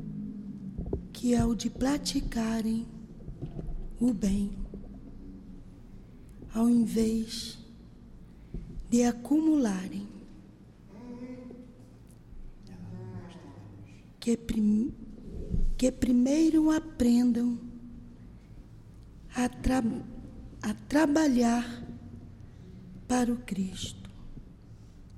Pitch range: 200-250 Hz